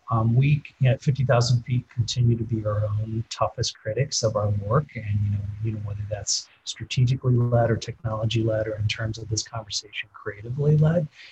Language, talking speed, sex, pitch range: English, 195 wpm, male, 110-130 Hz